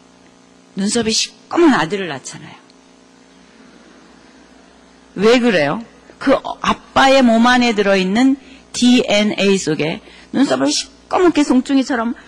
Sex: female